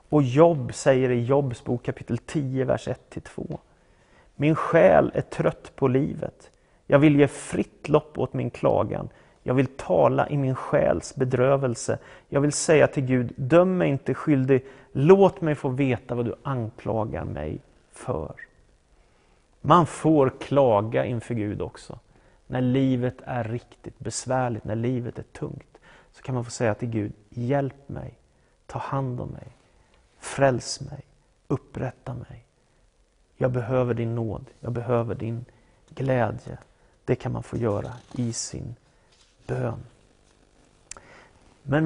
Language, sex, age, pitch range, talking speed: English, male, 30-49, 120-140 Hz, 140 wpm